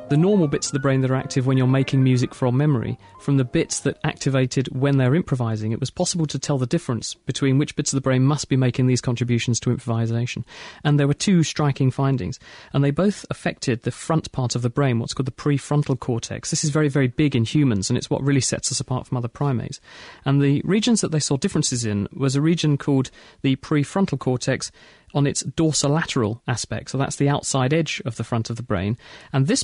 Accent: British